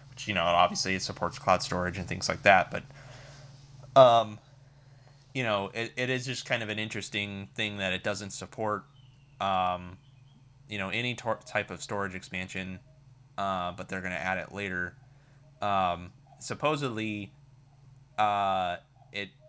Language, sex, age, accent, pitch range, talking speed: English, male, 20-39, American, 100-135 Hz, 150 wpm